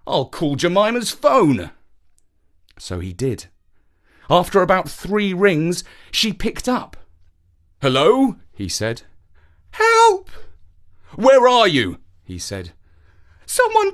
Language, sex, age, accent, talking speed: English, male, 40-59, British, 105 wpm